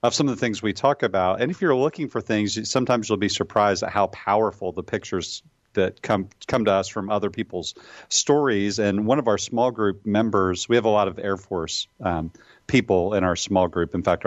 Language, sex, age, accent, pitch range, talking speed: English, male, 40-59, American, 95-110 Hz, 225 wpm